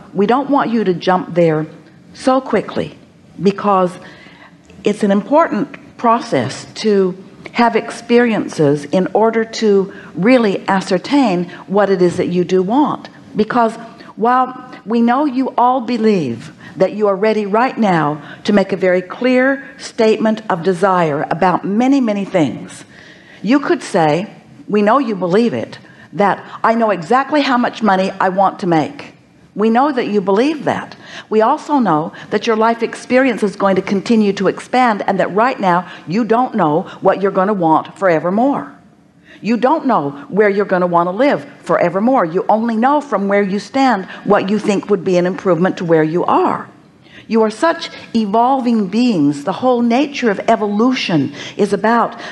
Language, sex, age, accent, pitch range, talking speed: English, female, 50-69, American, 185-240 Hz, 165 wpm